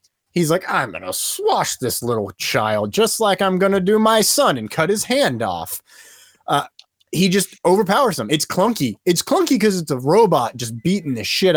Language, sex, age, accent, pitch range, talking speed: English, male, 30-49, American, 125-185 Hz, 200 wpm